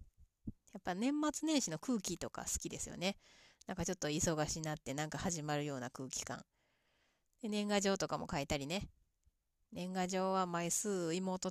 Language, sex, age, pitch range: Japanese, female, 30-49, 155-205 Hz